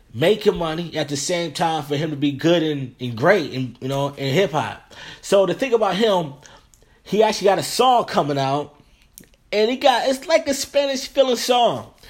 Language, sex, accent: English, male, American